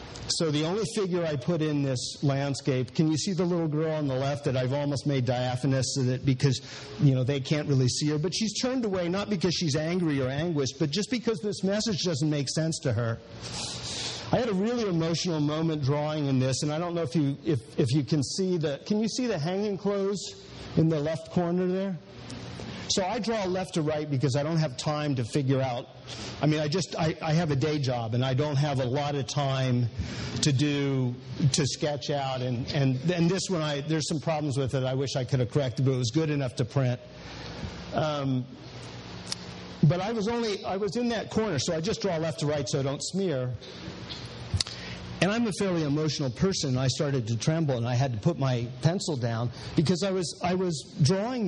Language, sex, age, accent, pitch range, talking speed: English, male, 50-69, American, 135-175 Hz, 225 wpm